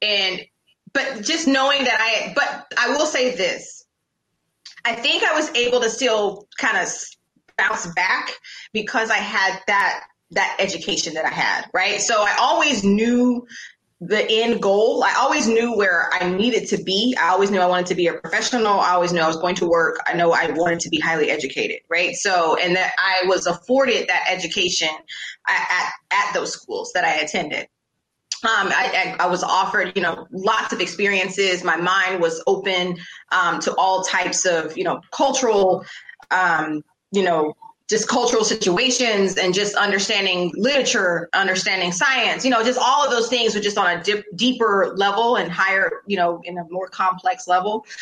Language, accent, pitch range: English, American, 180-245 Hz